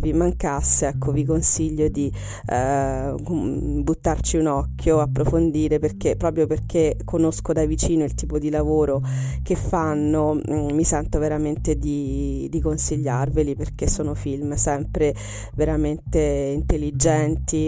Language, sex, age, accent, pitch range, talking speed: Italian, female, 30-49, native, 140-155 Hz, 120 wpm